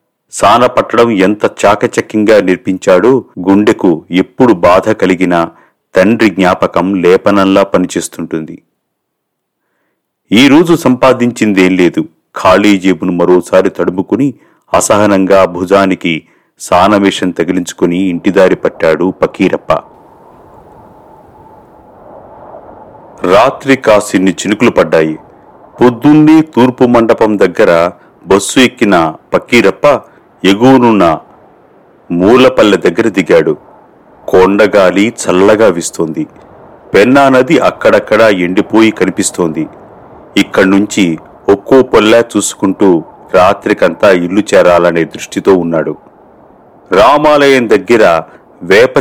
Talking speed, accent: 75 wpm, native